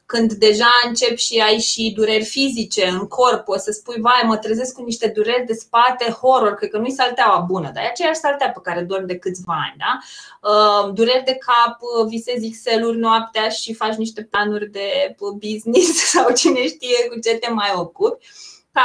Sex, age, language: female, 20-39, Romanian